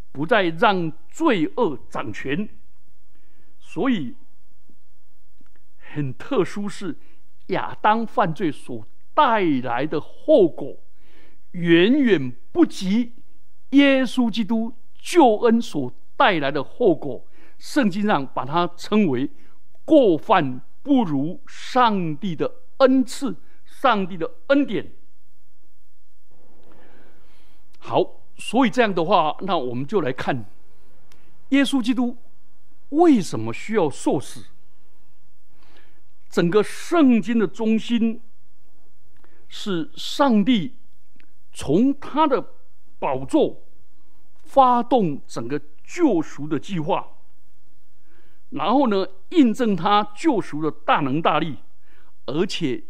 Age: 60-79